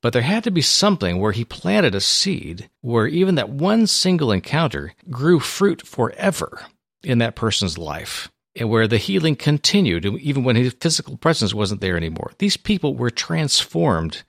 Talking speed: 170 wpm